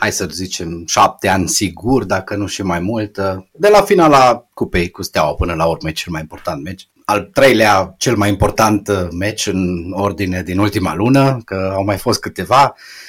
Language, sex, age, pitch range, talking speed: Romanian, male, 30-49, 95-125 Hz, 190 wpm